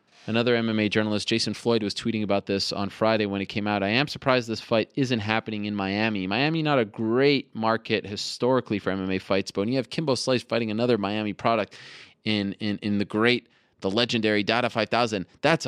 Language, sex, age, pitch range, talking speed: English, male, 20-39, 105-125 Hz, 205 wpm